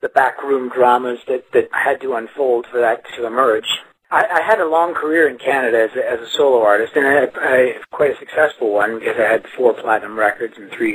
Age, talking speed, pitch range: 40-59, 235 wpm, 120-165 Hz